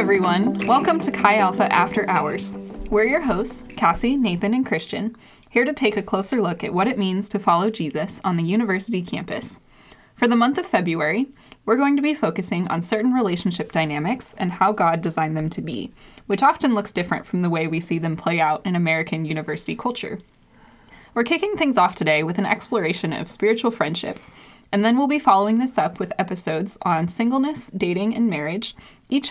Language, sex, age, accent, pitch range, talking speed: English, female, 10-29, American, 170-225 Hz, 190 wpm